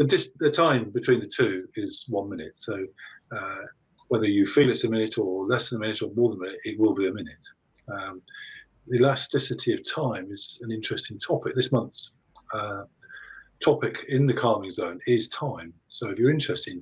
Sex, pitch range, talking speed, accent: male, 120-175 Hz, 200 wpm, British